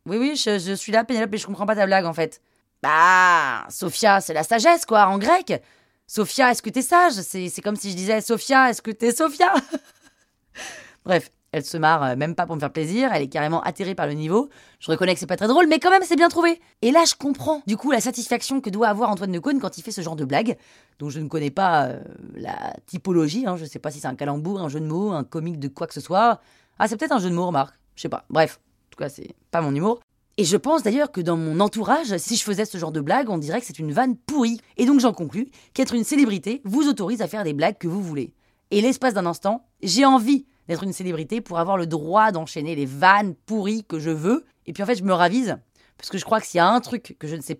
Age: 20-39